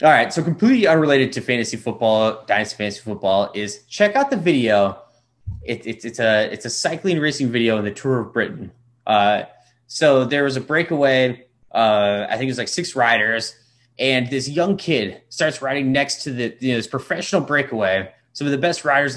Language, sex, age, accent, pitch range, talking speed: English, male, 20-39, American, 115-150 Hz, 195 wpm